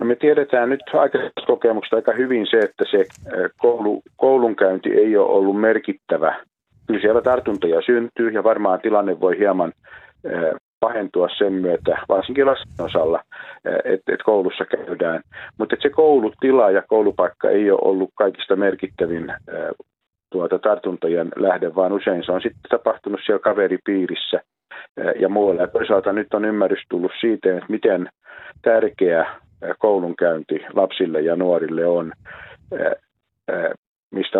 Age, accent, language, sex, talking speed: 50-69, native, Finnish, male, 125 wpm